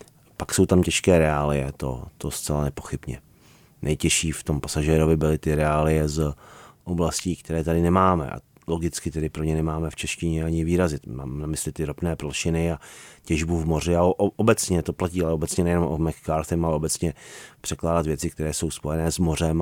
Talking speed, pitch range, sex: 185 wpm, 75-85 Hz, male